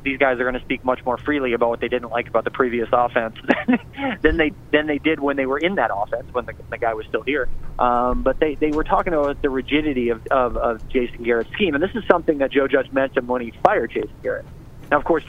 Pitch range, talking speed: 125-150 Hz, 265 wpm